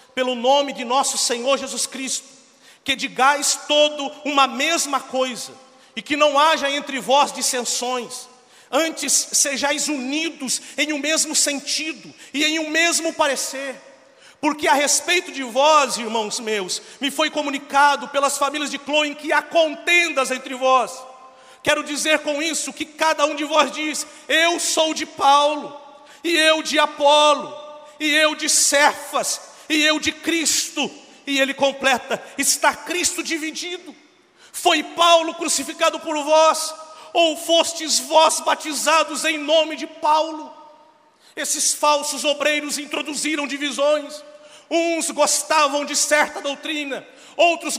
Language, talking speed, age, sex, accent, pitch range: Portuguese, 135 wpm, 50-69, male, Brazilian, 275-315 Hz